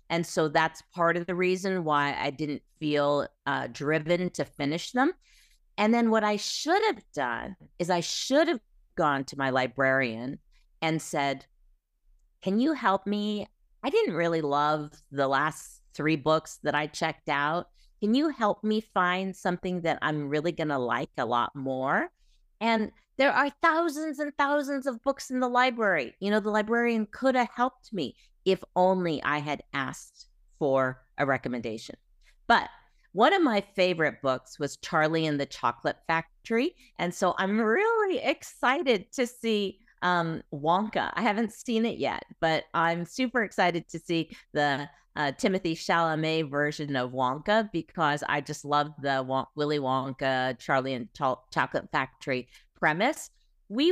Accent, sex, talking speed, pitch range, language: American, female, 160 wpm, 145-220 Hz, English